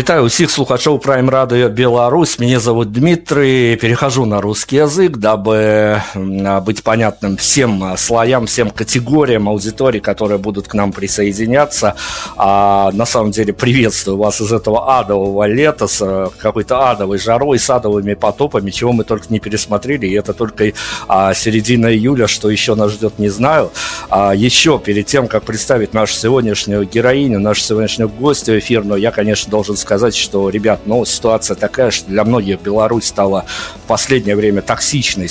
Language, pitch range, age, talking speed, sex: Russian, 100-120 Hz, 50-69, 155 wpm, male